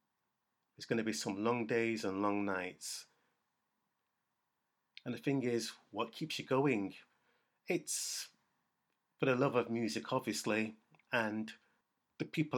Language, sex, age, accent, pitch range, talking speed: English, male, 30-49, British, 110-125 Hz, 135 wpm